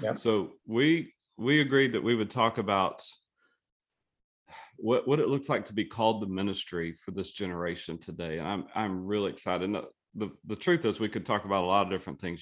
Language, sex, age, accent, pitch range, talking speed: English, male, 40-59, American, 95-120 Hz, 200 wpm